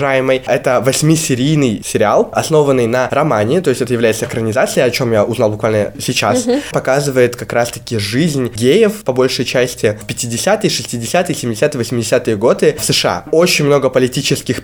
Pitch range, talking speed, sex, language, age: 115-140 Hz, 150 wpm, male, Russian, 20-39